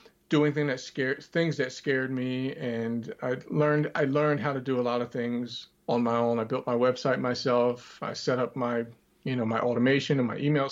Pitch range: 120-145 Hz